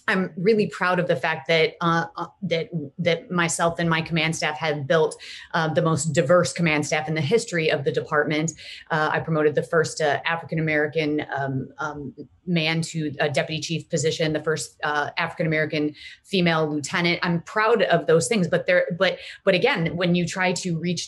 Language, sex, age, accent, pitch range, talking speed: English, female, 30-49, American, 160-185 Hz, 190 wpm